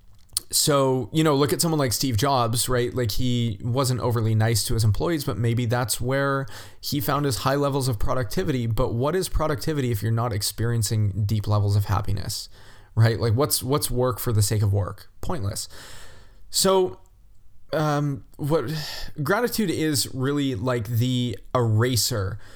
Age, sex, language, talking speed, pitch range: 20-39, male, English, 160 wpm, 105-130 Hz